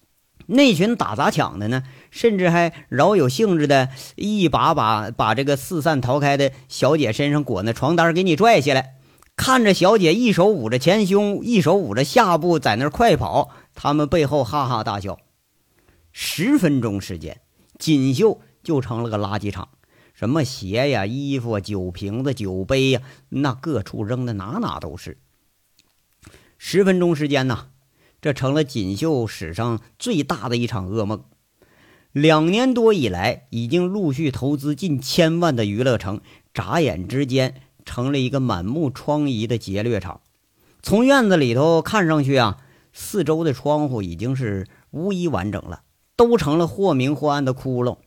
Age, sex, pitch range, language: 50-69, male, 120-165 Hz, Chinese